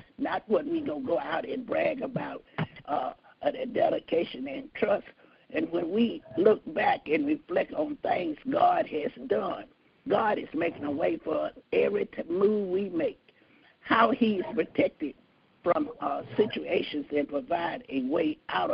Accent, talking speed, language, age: American, 155 wpm, English, 50-69